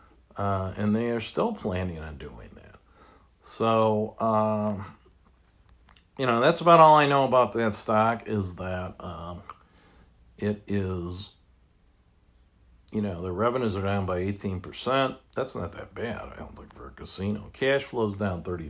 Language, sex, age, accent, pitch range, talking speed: English, male, 50-69, American, 90-120 Hz, 155 wpm